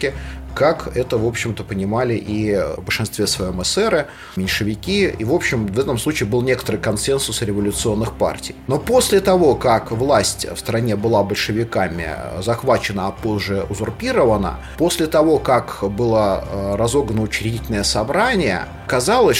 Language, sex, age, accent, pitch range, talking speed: Russian, male, 30-49, native, 100-135 Hz, 135 wpm